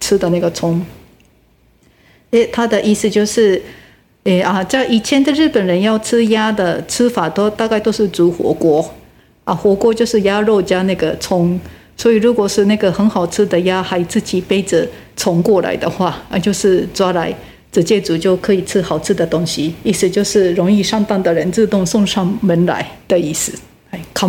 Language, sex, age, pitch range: Japanese, female, 50-69, 185-235 Hz